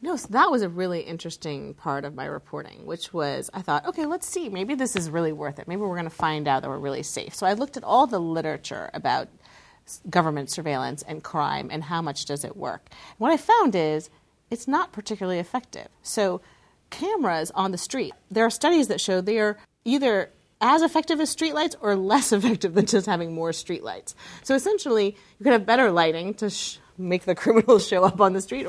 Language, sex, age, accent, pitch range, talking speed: English, female, 30-49, American, 165-220 Hz, 210 wpm